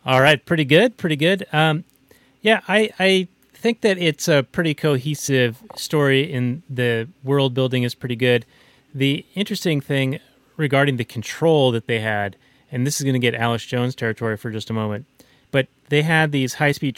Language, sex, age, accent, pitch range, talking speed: English, male, 30-49, American, 115-140 Hz, 180 wpm